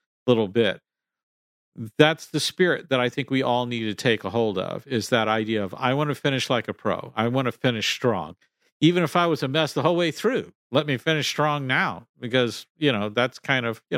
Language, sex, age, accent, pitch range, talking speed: English, male, 50-69, American, 110-140 Hz, 230 wpm